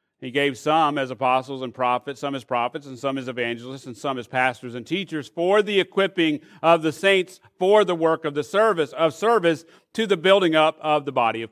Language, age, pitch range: English, 40-59, 135-190 Hz